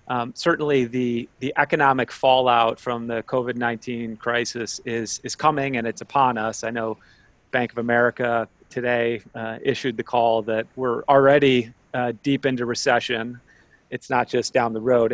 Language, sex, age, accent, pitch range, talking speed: English, male, 30-49, American, 115-130 Hz, 160 wpm